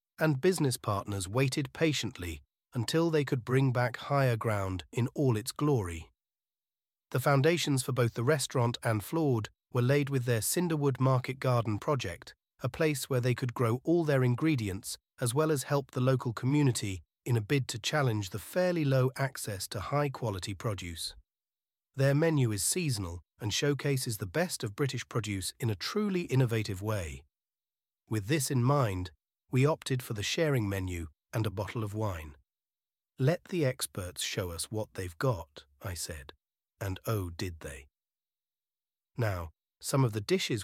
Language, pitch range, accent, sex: English, 100-140 Hz, British, male